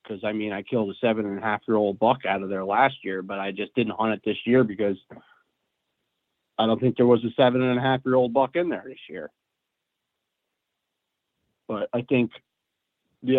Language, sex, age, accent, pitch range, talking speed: English, male, 40-59, American, 100-125 Hz, 170 wpm